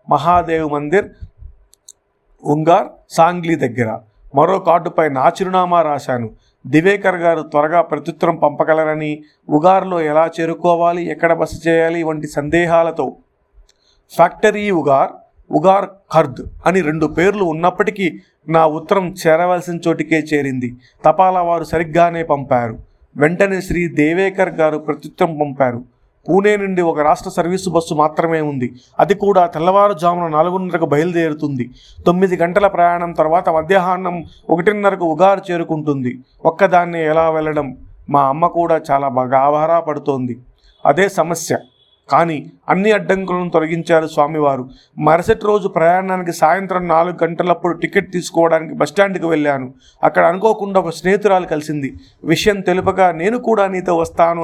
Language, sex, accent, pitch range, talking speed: Telugu, male, native, 150-180 Hz, 110 wpm